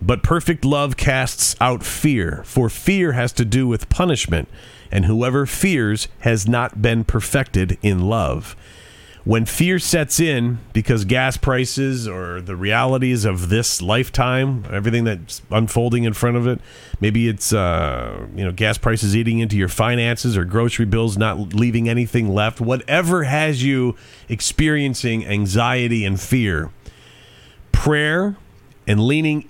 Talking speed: 140 wpm